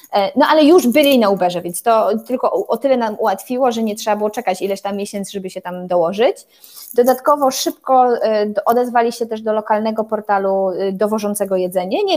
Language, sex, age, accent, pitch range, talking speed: Polish, female, 20-39, native, 195-235 Hz, 180 wpm